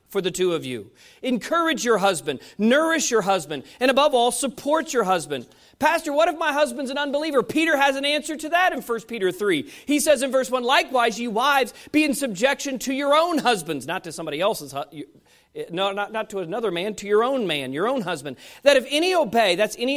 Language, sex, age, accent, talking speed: English, male, 40-59, American, 220 wpm